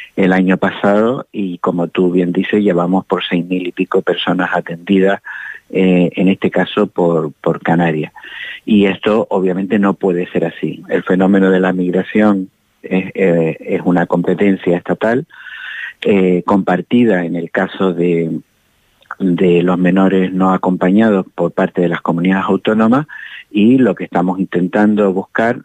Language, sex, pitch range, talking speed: Spanish, male, 90-100 Hz, 145 wpm